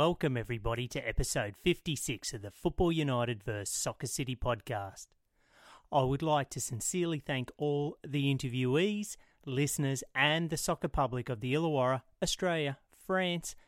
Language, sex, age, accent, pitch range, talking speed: English, male, 30-49, Australian, 125-150 Hz, 140 wpm